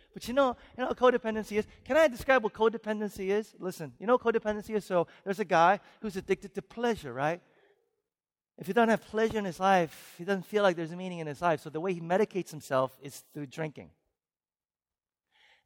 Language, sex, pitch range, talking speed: English, male, 155-220 Hz, 220 wpm